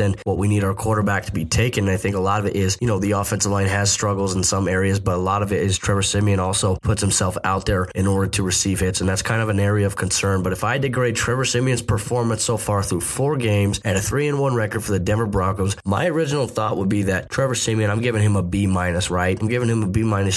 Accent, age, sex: American, 20-39, male